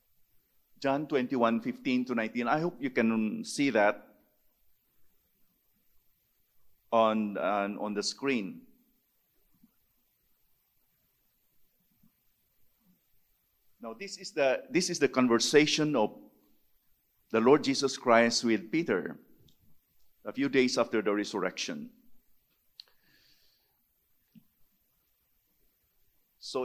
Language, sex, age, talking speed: English, male, 50-69, 85 wpm